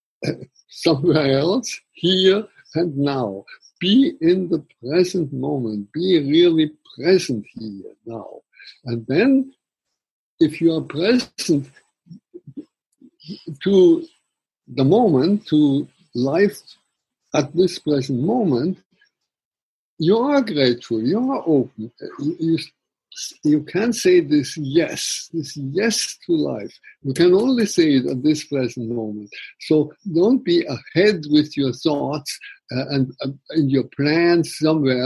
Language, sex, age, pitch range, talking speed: English, male, 60-79, 140-185 Hz, 115 wpm